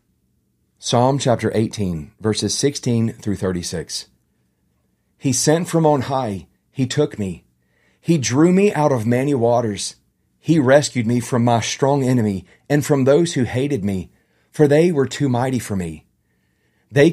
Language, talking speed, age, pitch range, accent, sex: English, 150 wpm, 40-59, 110-145 Hz, American, male